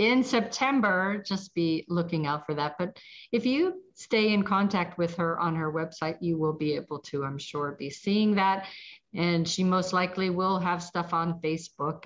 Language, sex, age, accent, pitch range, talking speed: English, female, 50-69, American, 160-185 Hz, 190 wpm